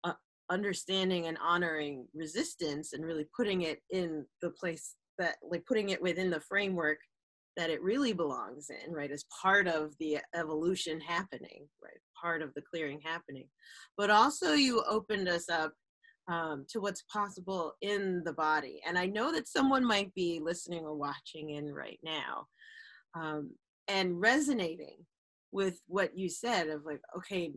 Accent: American